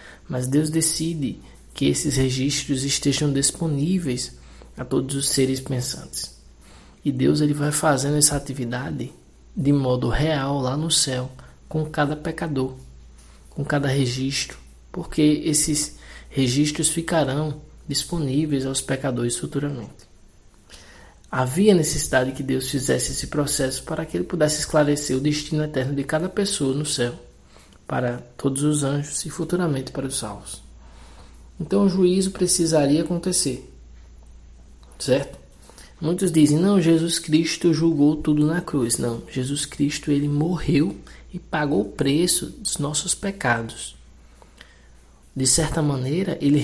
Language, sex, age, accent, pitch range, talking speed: Portuguese, male, 20-39, Brazilian, 110-155 Hz, 125 wpm